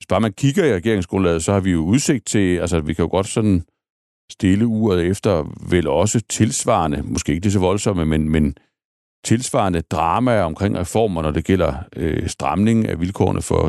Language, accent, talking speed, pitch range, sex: Danish, native, 190 wpm, 90-120 Hz, male